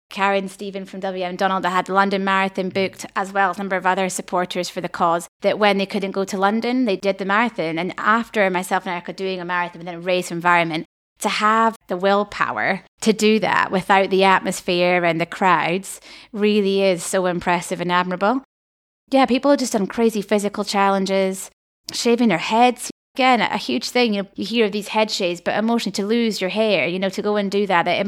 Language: English